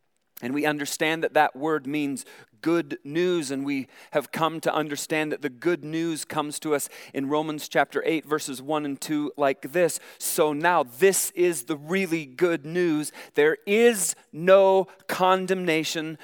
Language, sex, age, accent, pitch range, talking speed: English, male, 40-59, American, 150-195 Hz, 165 wpm